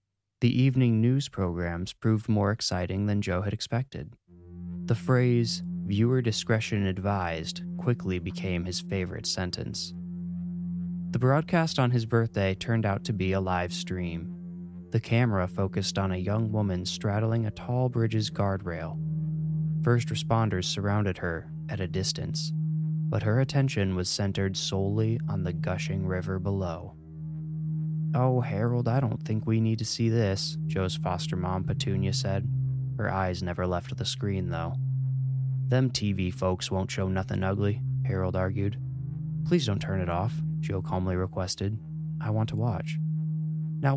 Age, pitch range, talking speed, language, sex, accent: 20-39, 90-130 Hz, 145 wpm, English, male, American